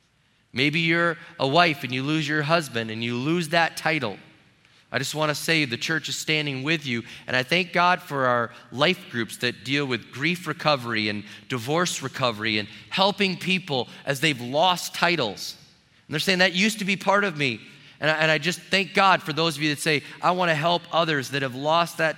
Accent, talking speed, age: American, 215 wpm, 30-49